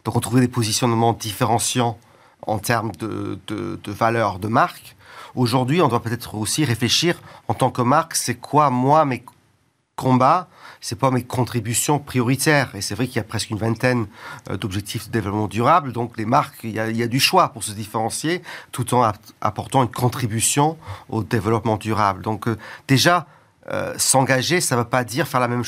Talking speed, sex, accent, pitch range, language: 190 wpm, male, French, 110-130 Hz, French